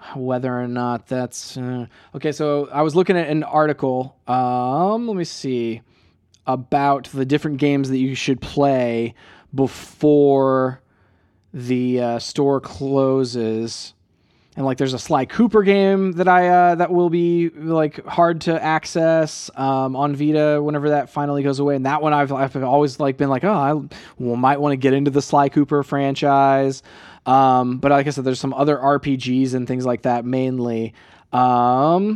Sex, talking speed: male, 170 wpm